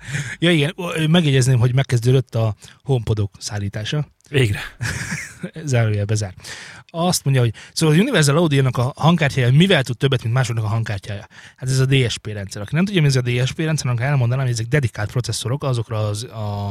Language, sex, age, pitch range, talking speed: Hungarian, male, 30-49, 115-145 Hz, 180 wpm